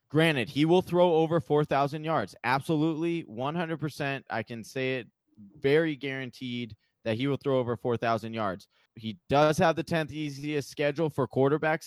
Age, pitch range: 20-39, 120-155 Hz